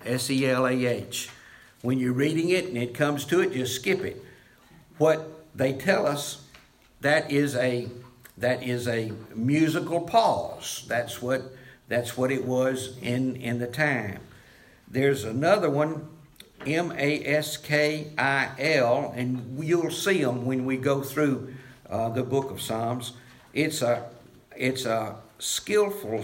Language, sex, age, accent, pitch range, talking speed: English, male, 60-79, American, 120-150 Hz, 130 wpm